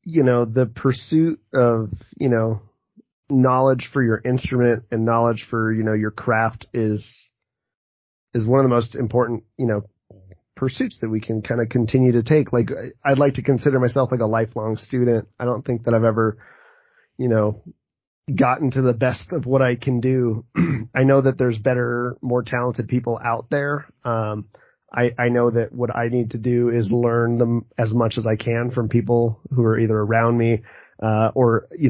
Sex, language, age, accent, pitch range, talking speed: male, English, 30-49, American, 110-125 Hz, 190 wpm